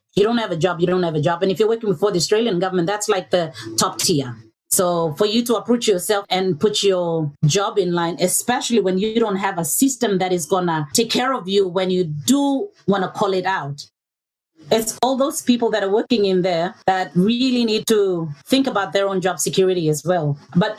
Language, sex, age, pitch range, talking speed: English, female, 30-49, 170-210 Hz, 230 wpm